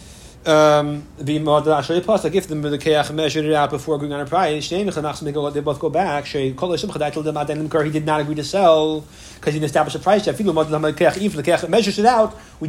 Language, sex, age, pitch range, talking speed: English, male, 30-49, 150-205 Hz, 195 wpm